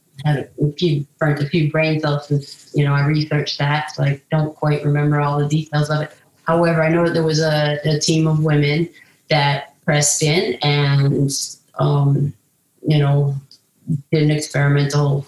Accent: American